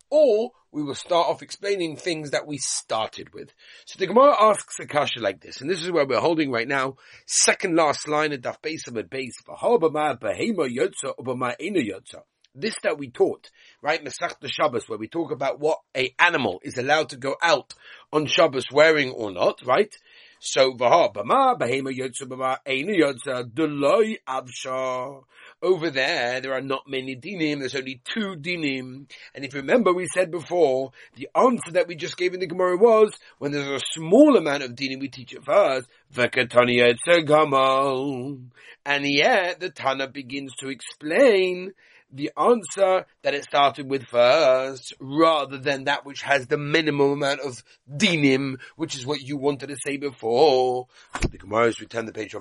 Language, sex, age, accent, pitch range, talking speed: English, male, 30-49, British, 130-160 Hz, 155 wpm